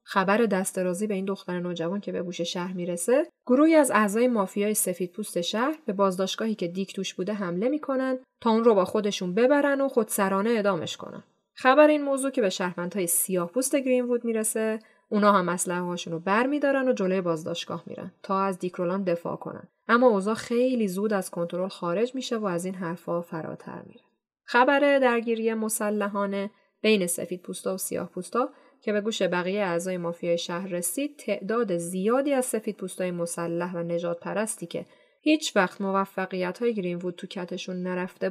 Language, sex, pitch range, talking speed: Persian, female, 180-235 Hz, 170 wpm